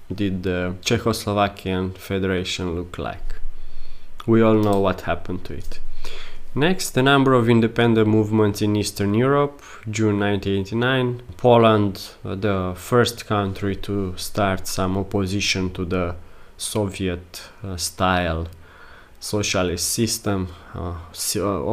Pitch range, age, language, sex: 95-115 Hz, 20-39, English, male